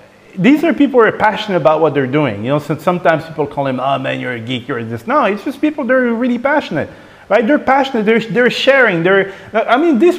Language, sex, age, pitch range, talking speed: English, male, 30-49, 130-215 Hz, 235 wpm